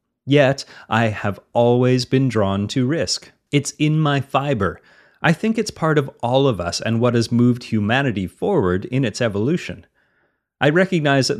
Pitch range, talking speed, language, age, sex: 105-135 Hz, 170 wpm, English, 30-49, male